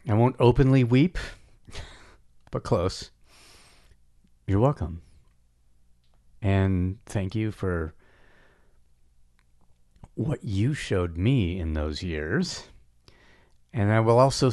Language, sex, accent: English, male, American